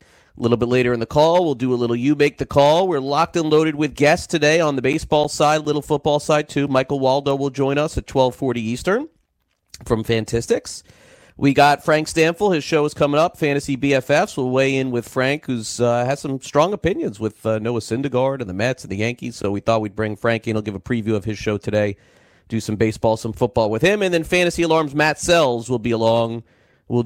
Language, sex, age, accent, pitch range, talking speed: English, male, 40-59, American, 105-140 Hz, 230 wpm